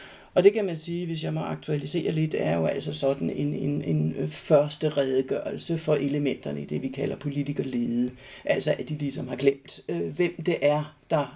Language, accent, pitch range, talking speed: Danish, native, 135-170 Hz, 190 wpm